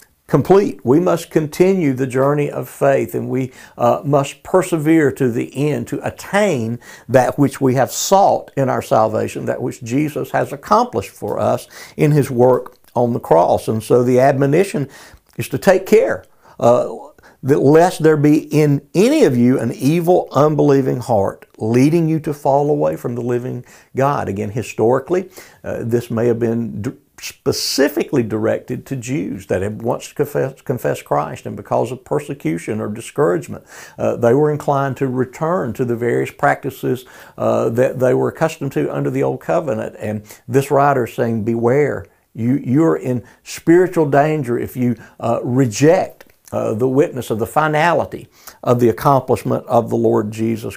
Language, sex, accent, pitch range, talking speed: English, male, American, 120-150 Hz, 165 wpm